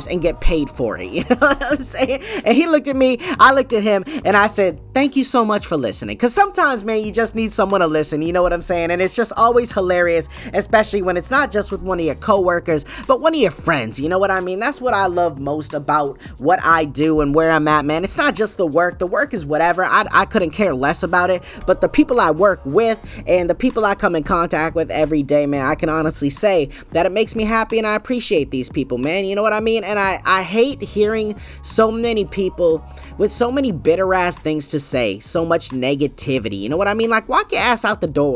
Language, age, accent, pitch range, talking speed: English, 20-39, American, 160-225 Hz, 260 wpm